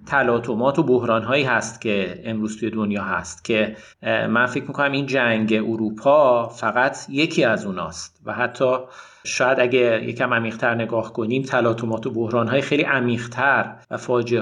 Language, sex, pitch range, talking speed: Persian, male, 115-135 Hz, 155 wpm